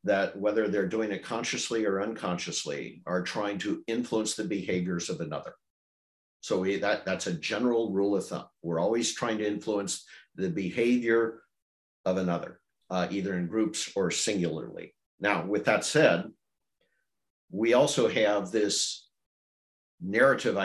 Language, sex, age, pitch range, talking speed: English, male, 50-69, 100-125 Hz, 140 wpm